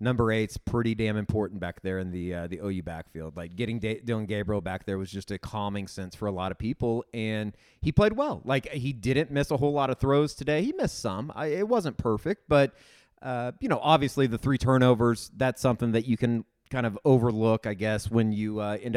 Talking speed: 230 wpm